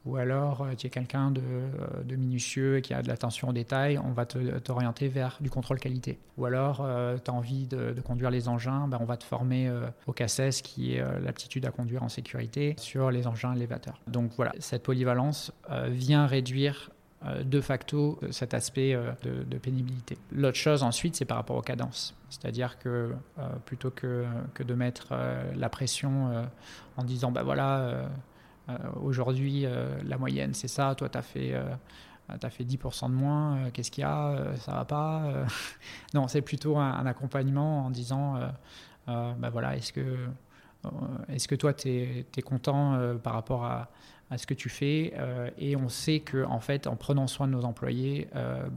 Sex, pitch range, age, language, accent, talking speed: male, 120-140 Hz, 20-39, French, French, 210 wpm